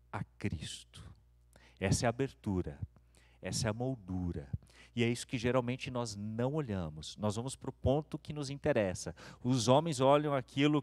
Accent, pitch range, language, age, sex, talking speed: Brazilian, 115-175 Hz, Portuguese, 40-59, male, 165 wpm